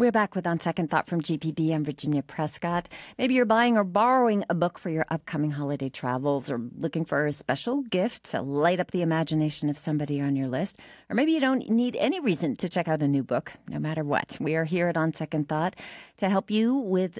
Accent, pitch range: American, 150-205 Hz